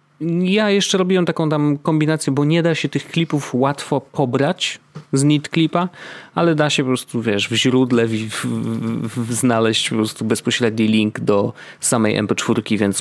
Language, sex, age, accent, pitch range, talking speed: Polish, male, 30-49, native, 115-165 Hz, 170 wpm